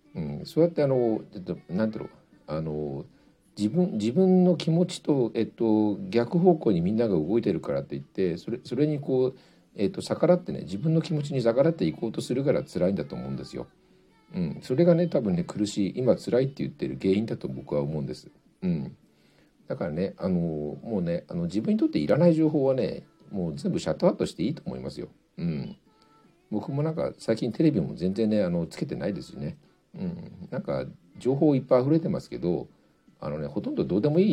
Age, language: 50-69, Japanese